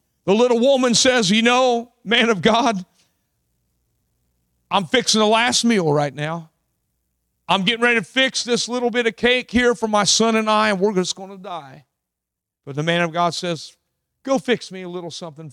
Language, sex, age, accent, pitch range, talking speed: English, male, 50-69, American, 145-235 Hz, 195 wpm